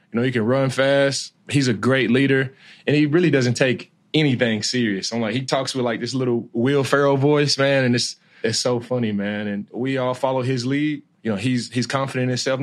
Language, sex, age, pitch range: English, male, 20-39, 120-140 Hz